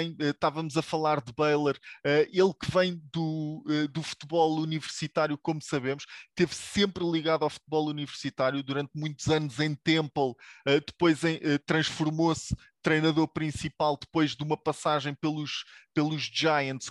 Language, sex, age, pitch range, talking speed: English, male, 20-39, 150-185 Hz, 130 wpm